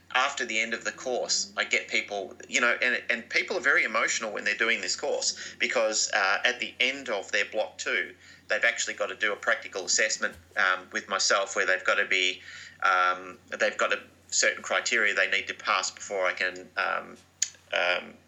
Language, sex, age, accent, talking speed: English, male, 30-49, Australian, 205 wpm